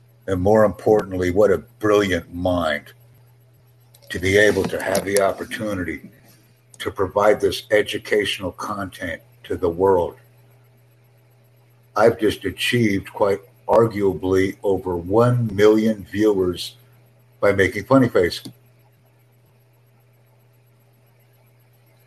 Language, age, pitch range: English, 60-79, 105-125 Hz